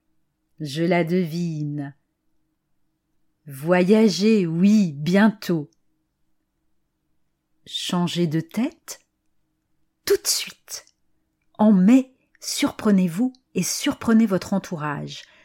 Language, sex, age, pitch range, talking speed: French, female, 40-59, 165-240 Hz, 75 wpm